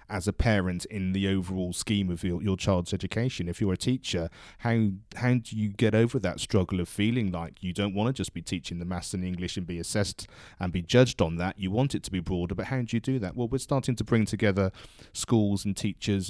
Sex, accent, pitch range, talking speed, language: male, British, 95-110 Hz, 250 wpm, English